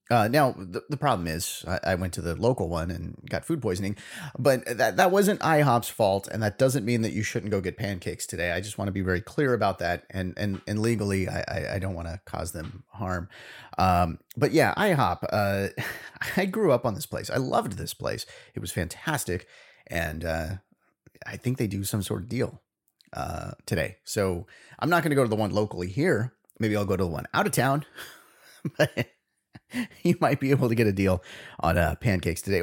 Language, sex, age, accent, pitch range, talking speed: English, male, 30-49, American, 95-135 Hz, 220 wpm